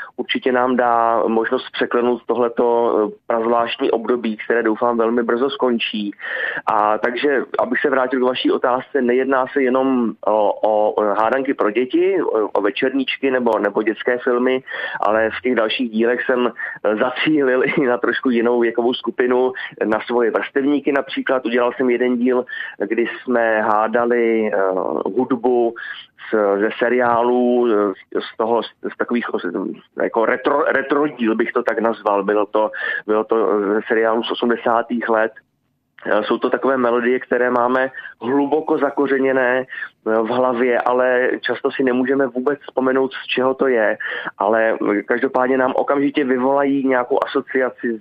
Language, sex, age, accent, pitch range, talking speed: Czech, male, 20-39, native, 115-130 Hz, 140 wpm